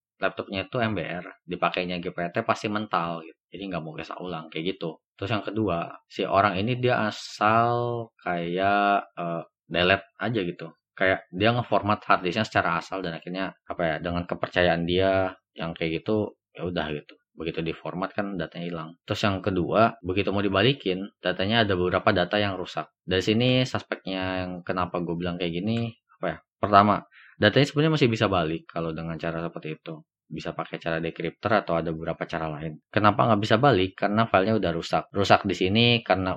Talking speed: 175 wpm